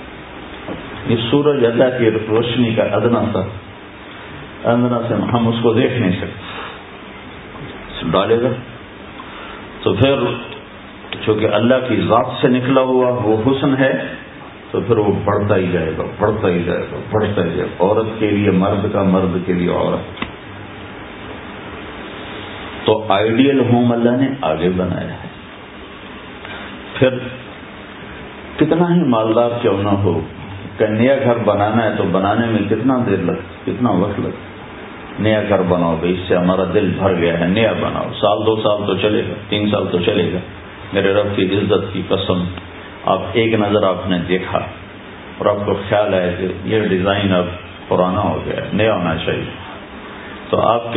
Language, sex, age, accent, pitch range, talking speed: English, male, 50-69, Indian, 95-115 Hz, 145 wpm